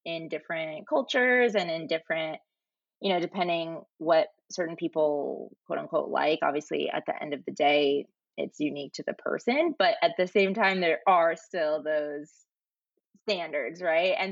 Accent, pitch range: American, 170-220 Hz